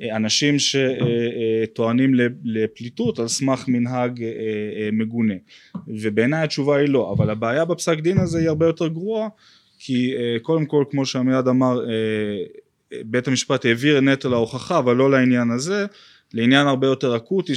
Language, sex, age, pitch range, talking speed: Hebrew, male, 20-39, 120-160 Hz, 135 wpm